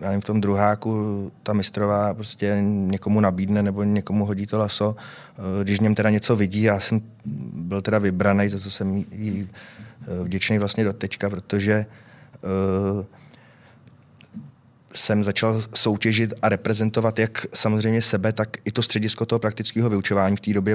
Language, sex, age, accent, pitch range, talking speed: Czech, male, 20-39, native, 95-110 Hz, 150 wpm